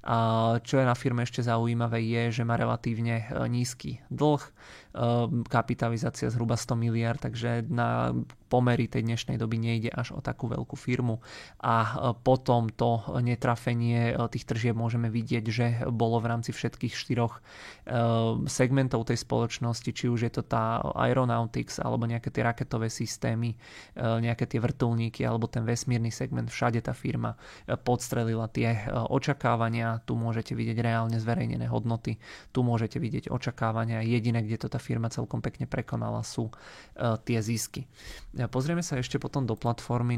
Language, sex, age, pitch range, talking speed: Czech, male, 20-39, 115-125 Hz, 145 wpm